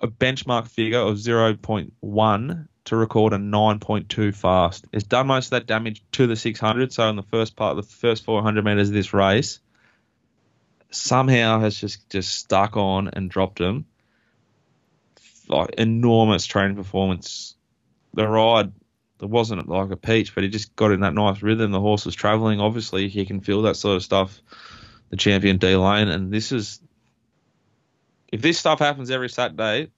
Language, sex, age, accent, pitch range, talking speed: English, male, 20-39, Australian, 100-115 Hz, 165 wpm